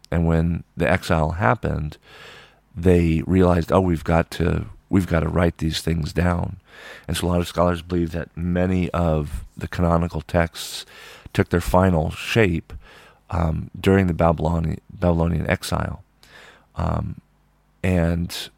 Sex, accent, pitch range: male, American, 80-95 Hz